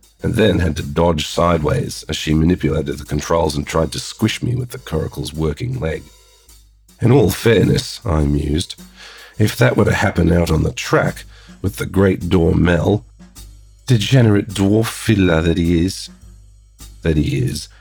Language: English